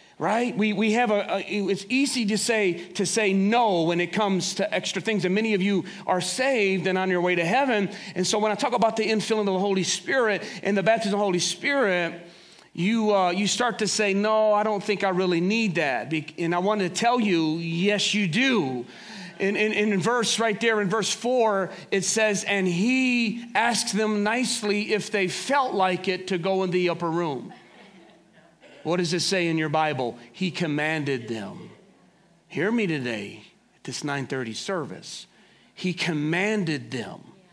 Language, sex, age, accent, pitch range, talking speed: English, male, 40-59, American, 165-215 Hz, 190 wpm